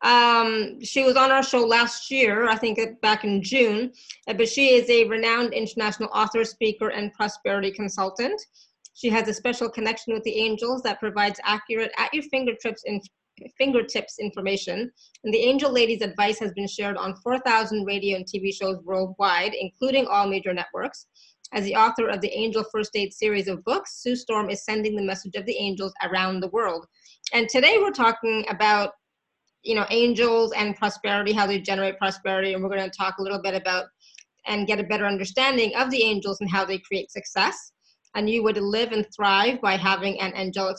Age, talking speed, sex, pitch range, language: 30-49, 195 wpm, female, 195-230 Hz, English